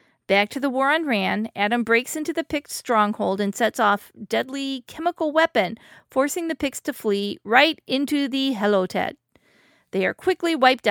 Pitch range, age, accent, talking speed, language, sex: 205-260 Hz, 40-59, American, 170 wpm, English, female